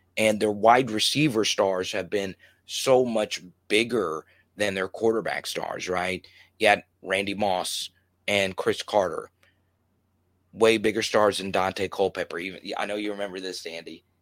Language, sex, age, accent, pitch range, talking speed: English, male, 30-49, American, 90-110 Hz, 150 wpm